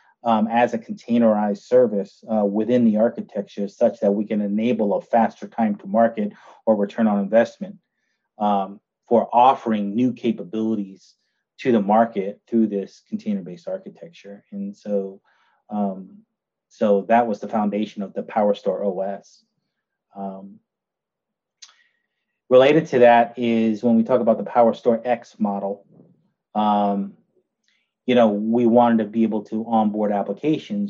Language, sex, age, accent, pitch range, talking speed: English, male, 30-49, American, 100-120 Hz, 140 wpm